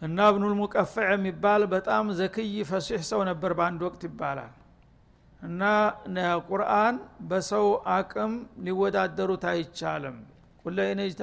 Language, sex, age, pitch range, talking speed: Amharic, male, 60-79, 170-205 Hz, 135 wpm